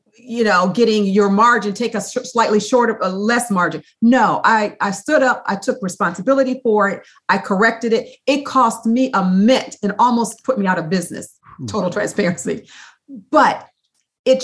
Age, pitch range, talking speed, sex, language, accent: 40-59, 200-255 Hz, 165 wpm, female, English, American